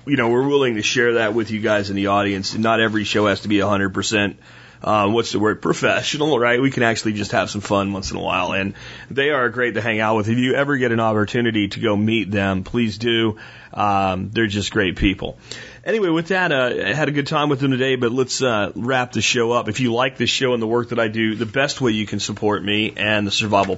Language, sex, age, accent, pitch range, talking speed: Danish, male, 30-49, American, 105-125 Hz, 260 wpm